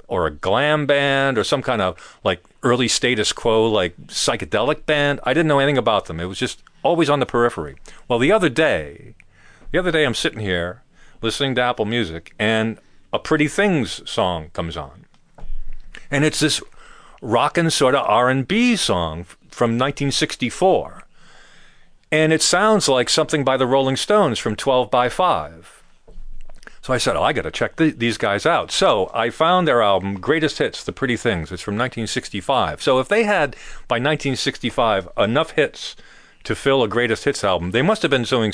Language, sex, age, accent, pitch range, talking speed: English, male, 40-59, American, 110-155 Hz, 180 wpm